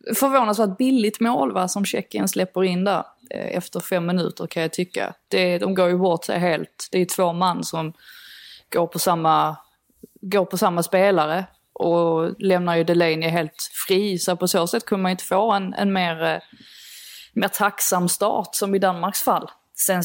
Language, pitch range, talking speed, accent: Swedish, 170-200 Hz, 190 wpm, native